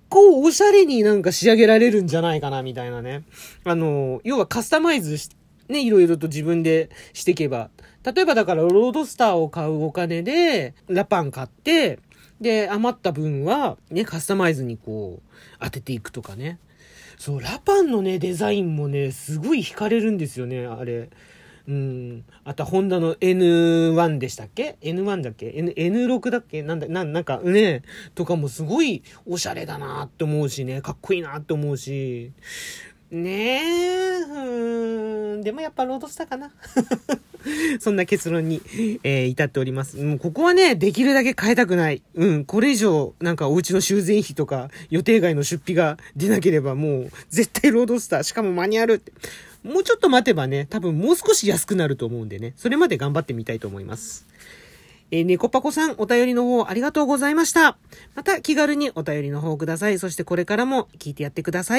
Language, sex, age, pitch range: Japanese, male, 40-59, 150-240 Hz